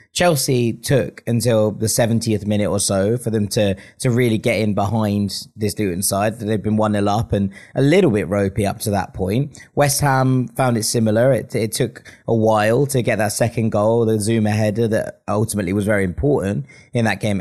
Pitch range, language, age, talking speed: 100-120 Hz, English, 30-49, 200 wpm